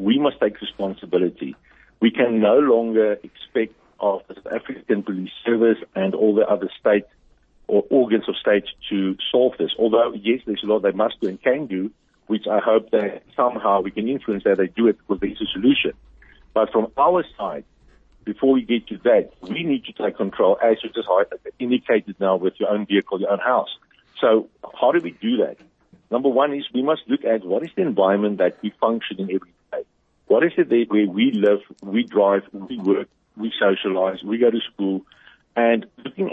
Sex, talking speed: male, 200 wpm